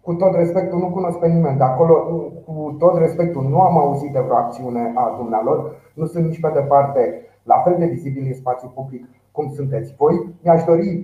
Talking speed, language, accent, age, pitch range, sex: 200 wpm, Romanian, native, 30-49, 125-165 Hz, male